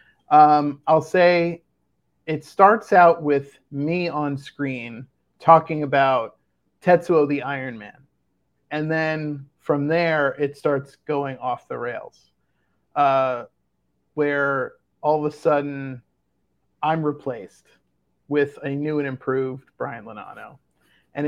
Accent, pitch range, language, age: American, 130-155 Hz, English, 40-59